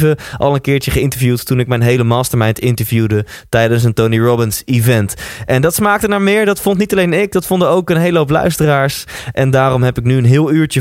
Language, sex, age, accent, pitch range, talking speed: Dutch, male, 20-39, Dutch, 115-155 Hz, 220 wpm